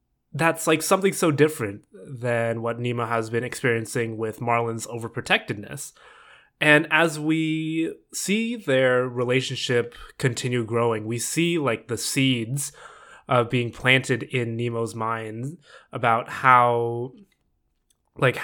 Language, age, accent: English, 20-39, American